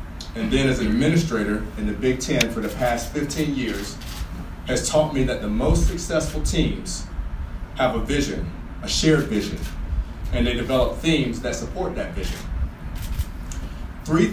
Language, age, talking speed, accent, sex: English, 40-59, 155 wpm, American, male